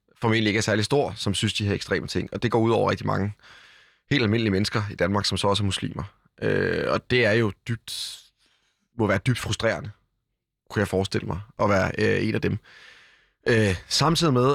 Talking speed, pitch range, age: 210 wpm, 95-115 Hz, 20-39